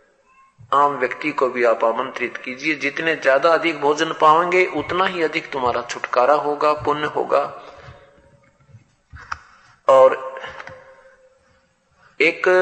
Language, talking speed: Hindi, 105 wpm